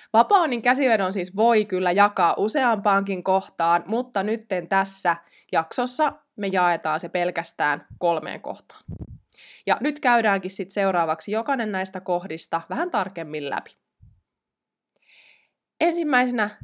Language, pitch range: Finnish, 175-230 Hz